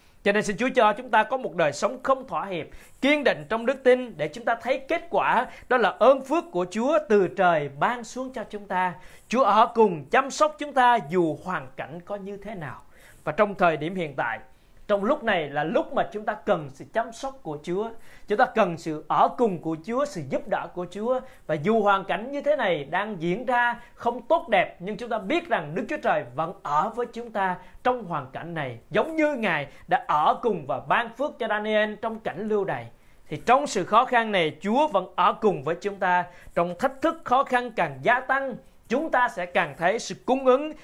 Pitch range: 165-240 Hz